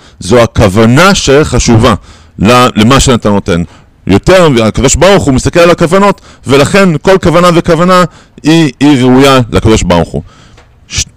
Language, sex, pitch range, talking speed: Hebrew, male, 115-170 Hz, 125 wpm